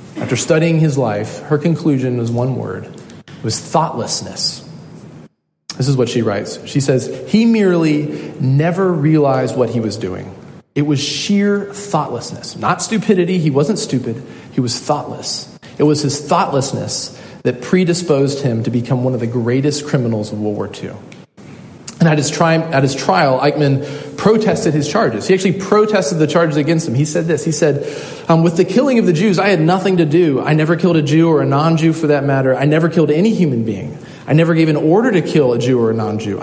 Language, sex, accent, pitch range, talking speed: English, male, American, 125-170 Hz, 195 wpm